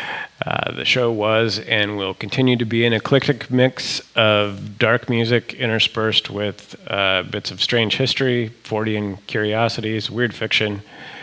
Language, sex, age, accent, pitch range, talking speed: English, male, 30-49, American, 100-120 Hz, 140 wpm